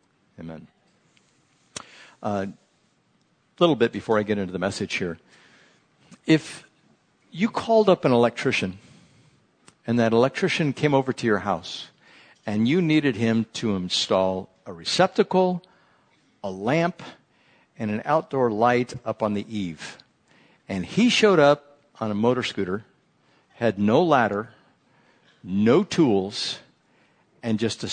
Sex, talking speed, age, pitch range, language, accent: male, 125 wpm, 60-79, 110-175 Hz, English, American